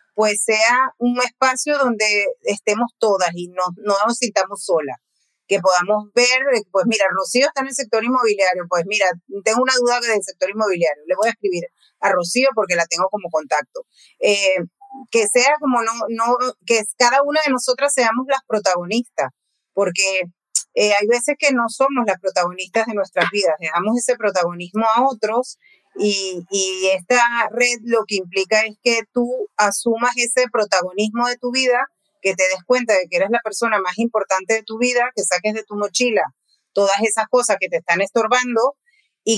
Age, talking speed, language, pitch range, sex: 30-49, 180 wpm, Spanish, 190-245 Hz, female